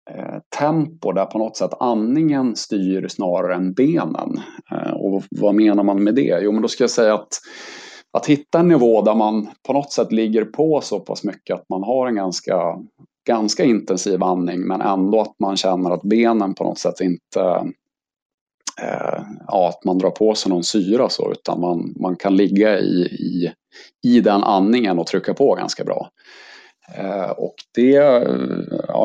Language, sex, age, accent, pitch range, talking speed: Swedish, male, 30-49, Norwegian, 95-115 Hz, 170 wpm